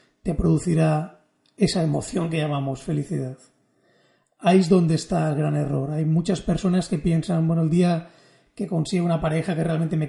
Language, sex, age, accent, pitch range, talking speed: Spanish, male, 30-49, Spanish, 155-190 Hz, 170 wpm